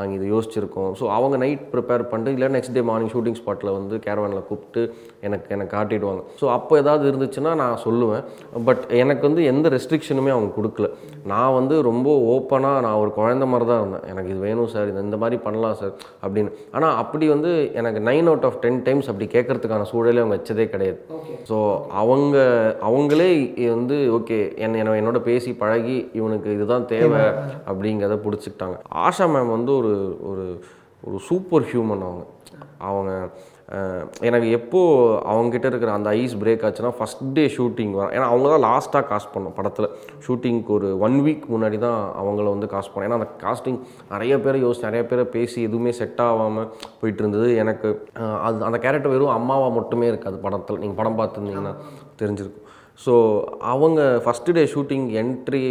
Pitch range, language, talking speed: 105-125 Hz, Tamil, 165 wpm